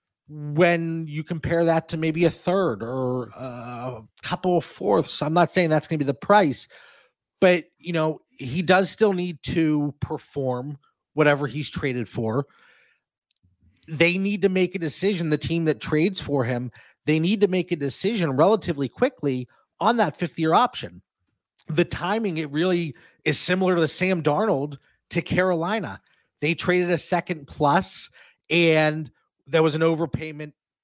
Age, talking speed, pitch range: 30-49, 160 wpm, 140-180 Hz